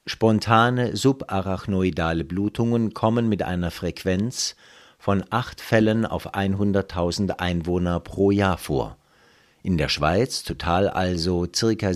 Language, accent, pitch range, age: German, German, 85-110 Hz, 50-69